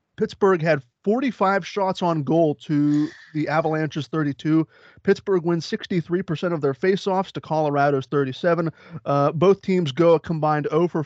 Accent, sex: American, male